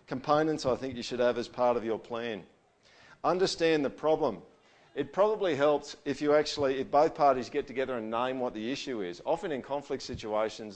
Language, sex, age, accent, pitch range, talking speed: English, male, 50-69, Australian, 130-160 Hz, 195 wpm